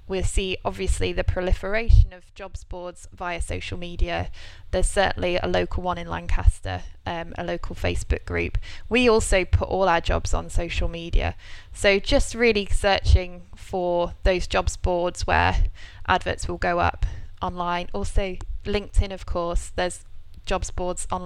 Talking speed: 150 wpm